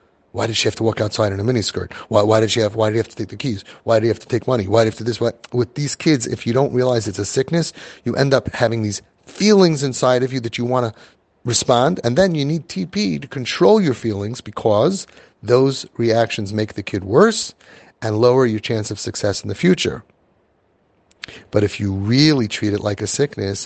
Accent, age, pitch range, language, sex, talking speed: American, 30-49, 105-135 Hz, English, male, 245 wpm